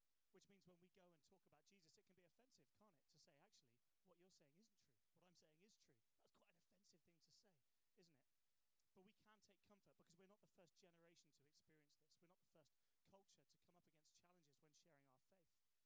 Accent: British